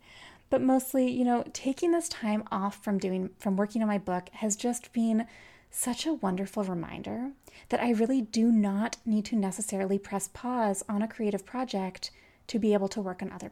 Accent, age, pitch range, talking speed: American, 20-39, 200-250 Hz, 190 wpm